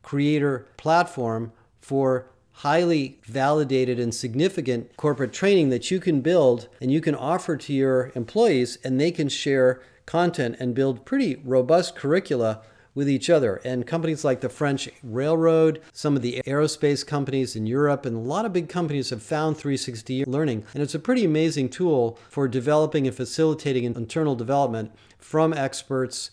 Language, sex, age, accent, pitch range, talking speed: English, male, 40-59, American, 125-155 Hz, 160 wpm